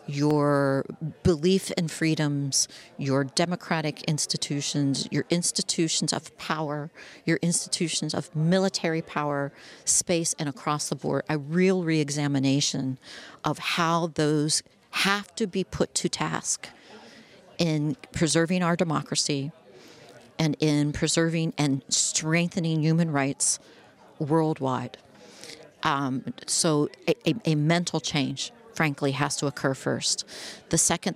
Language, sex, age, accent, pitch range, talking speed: English, female, 40-59, American, 150-175 Hz, 115 wpm